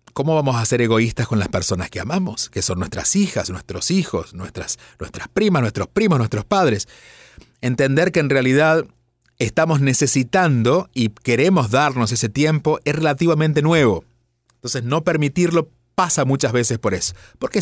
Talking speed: 155 wpm